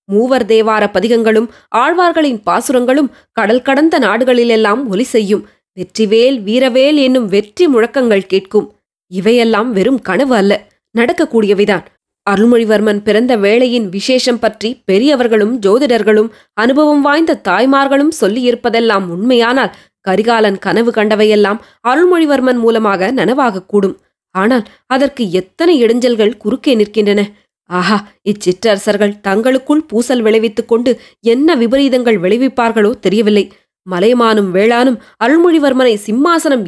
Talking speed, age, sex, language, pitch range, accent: 95 wpm, 20-39, female, Tamil, 205-255 Hz, native